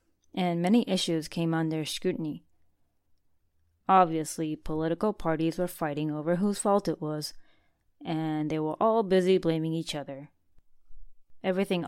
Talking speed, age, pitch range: 125 wpm, 20-39, 145-180 Hz